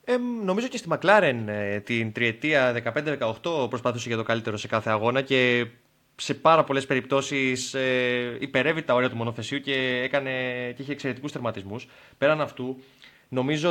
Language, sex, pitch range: Greek, male, 115-155 Hz